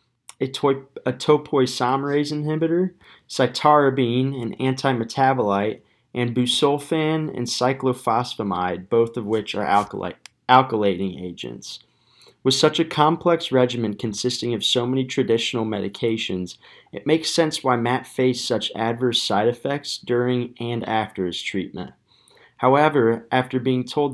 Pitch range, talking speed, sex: 110-130 Hz, 120 wpm, male